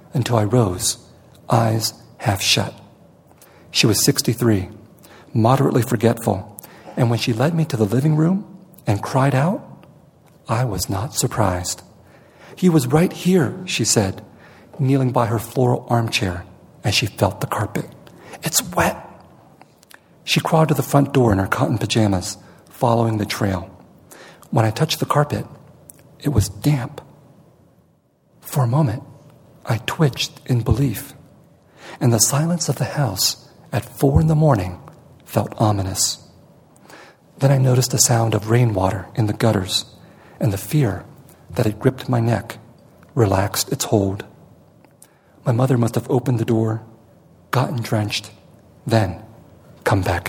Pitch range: 105-140 Hz